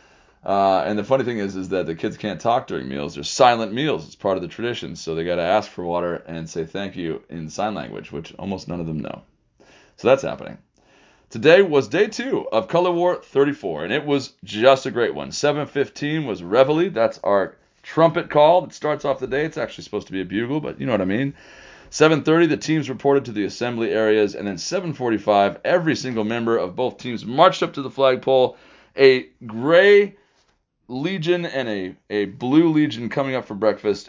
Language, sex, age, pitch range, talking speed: English, male, 30-49, 100-140 Hz, 210 wpm